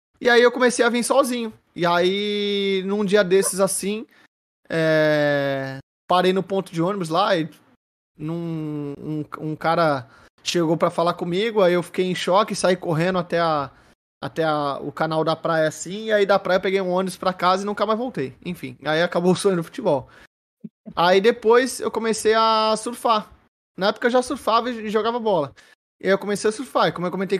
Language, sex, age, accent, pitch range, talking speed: Portuguese, male, 20-39, Brazilian, 165-205 Hz, 195 wpm